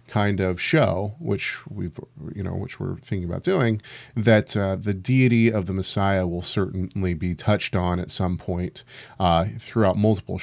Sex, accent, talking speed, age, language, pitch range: male, American, 175 wpm, 40-59, English, 100-130 Hz